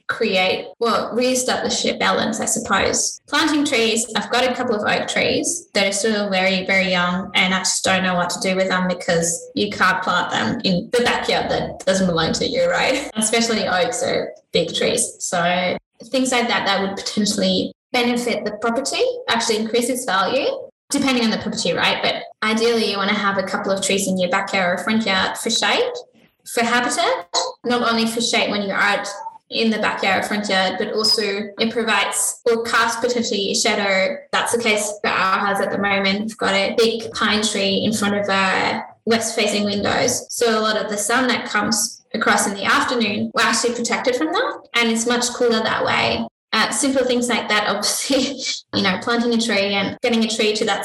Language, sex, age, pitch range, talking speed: English, female, 10-29, 195-240 Hz, 205 wpm